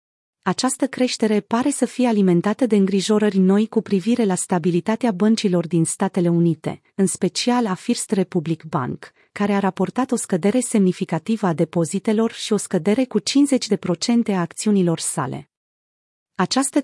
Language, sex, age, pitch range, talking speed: Romanian, female, 30-49, 180-225 Hz, 145 wpm